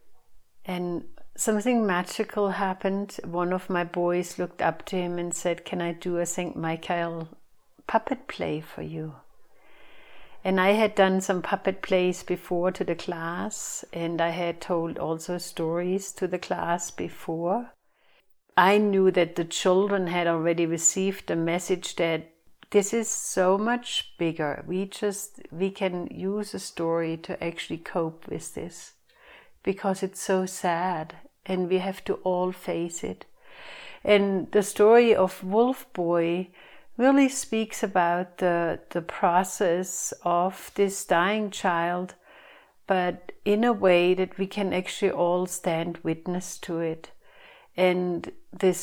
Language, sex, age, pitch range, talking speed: English, female, 60-79, 170-195 Hz, 140 wpm